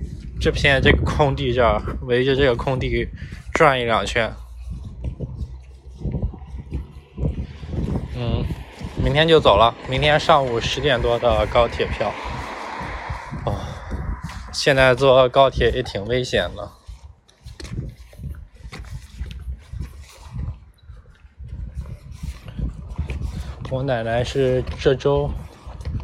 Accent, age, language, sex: native, 20-39, Chinese, male